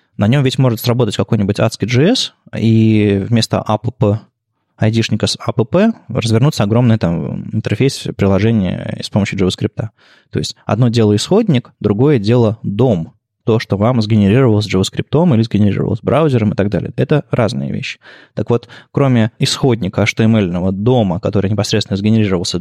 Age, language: 20-39, Russian